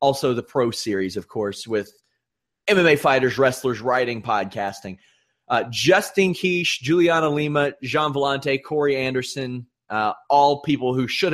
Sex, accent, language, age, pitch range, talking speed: male, American, English, 30-49, 120-180 Hz, 140 wpm